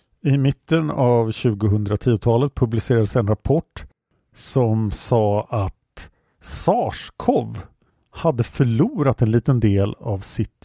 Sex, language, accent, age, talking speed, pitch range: male, English, Norwegian, 50-69, 100 wpm, 105-140 Hz